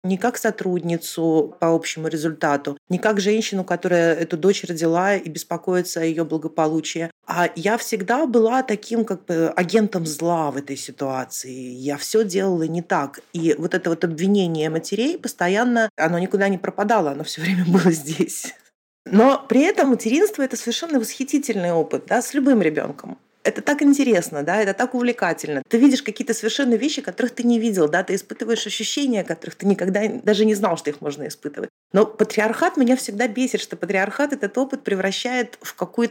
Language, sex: Russian, female